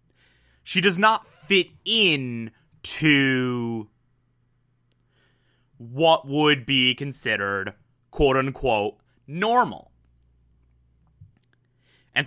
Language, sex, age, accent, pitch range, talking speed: English, male, 30-49, American, 120-150 Hz, 65 wpm